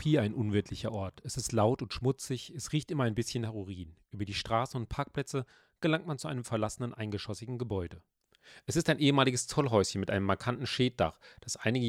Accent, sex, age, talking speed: German, male, 40-59, 190 wpm